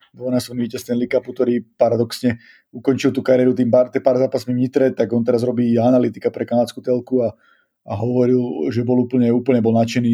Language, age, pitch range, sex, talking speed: Slovak, 30-49, 120-135 Hz, male, 200 wpm